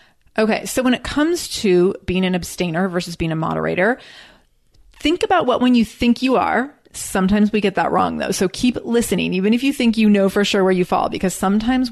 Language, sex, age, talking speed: English, female, 30-49, 215 wpm